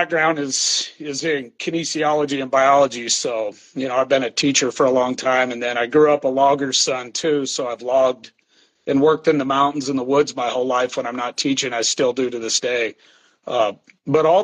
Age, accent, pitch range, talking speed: 40-59, American, 130-160 Hz, 225 wpm